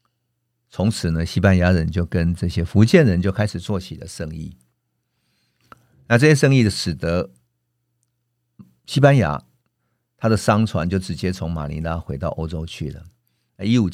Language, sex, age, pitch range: Chinese, male, 50-69, 85-115 Hz